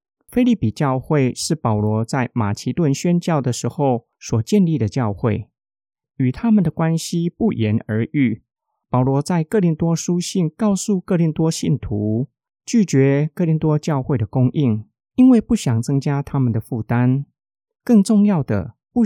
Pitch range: 120-175 Hz